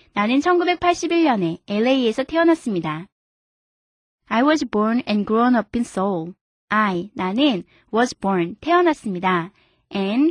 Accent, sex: native, female